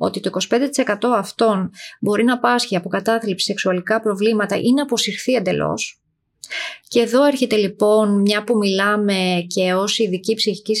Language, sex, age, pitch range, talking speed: Greek, female, 30-49, 195-230 Hz, 145 wpm